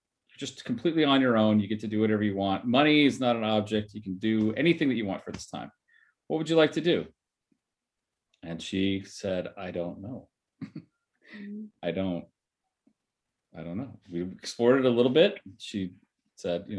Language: English